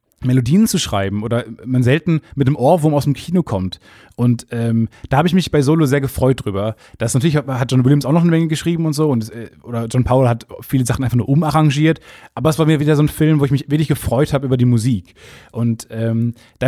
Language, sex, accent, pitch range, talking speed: German, male, German, 120-145 Hz, 240 wpm